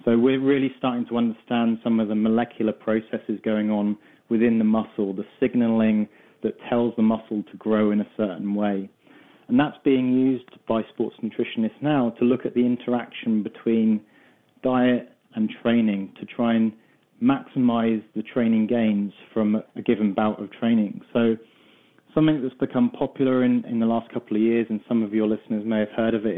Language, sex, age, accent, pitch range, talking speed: English, male, 20-39, British, 110-125 Hz, 180 wpm